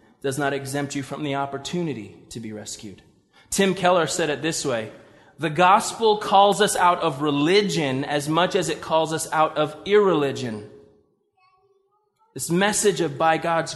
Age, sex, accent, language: 20-39, male, American, English